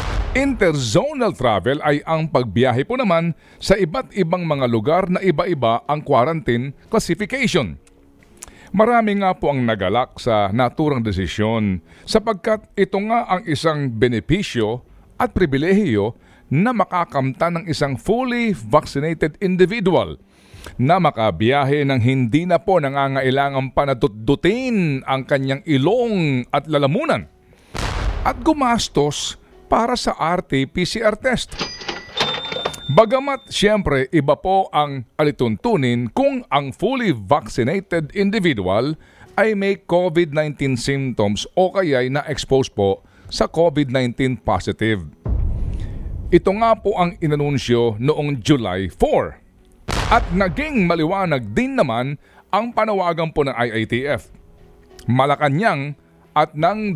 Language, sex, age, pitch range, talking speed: Filipino, male, 50-69, 125-185 Hz, 105 wpm